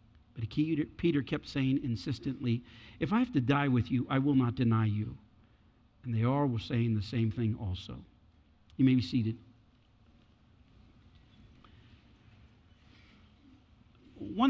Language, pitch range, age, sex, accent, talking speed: English, 120-150 Hz, 50-69, male, American, 130 wpm